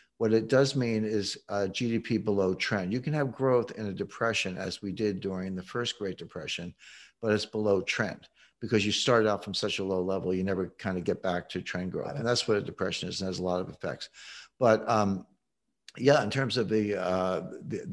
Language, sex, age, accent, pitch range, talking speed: English, male, 60-79, American, 95-110 Hz, 225 wpm